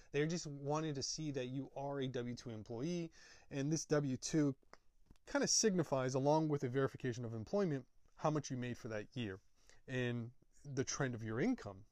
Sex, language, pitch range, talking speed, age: male, English, 120-155 Hz, 180 wpm, 20-39